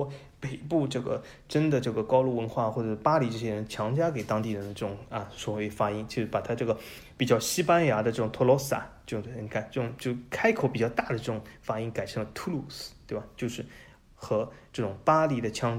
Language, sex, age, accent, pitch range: Chinese, male, 20-39, native, 110-145 Hz